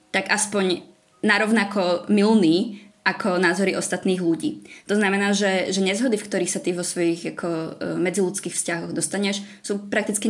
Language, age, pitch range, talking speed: Czech, 20-39, 170-195 Hz, 145 wpm